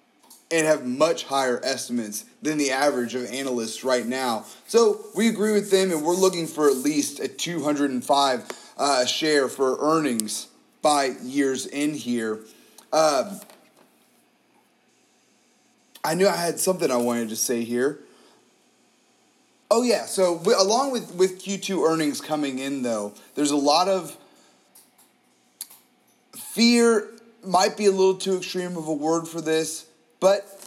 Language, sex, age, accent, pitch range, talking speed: English, male, 30-49, American, 135-175 Hz, 140 wpm